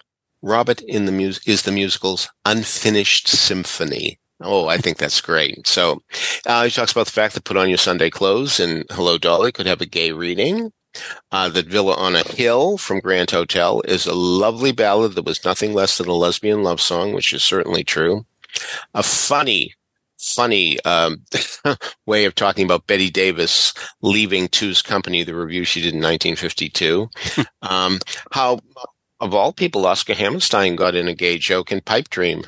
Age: 50-69